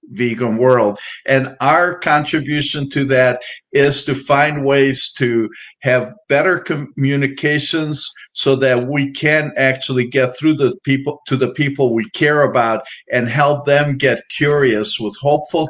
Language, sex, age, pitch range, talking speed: English, male, 50-69, 120-145 Hz, 140 wpm